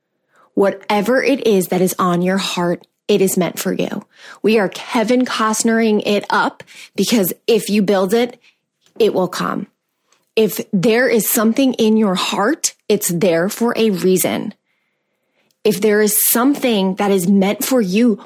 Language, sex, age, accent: English, female, 20-39, American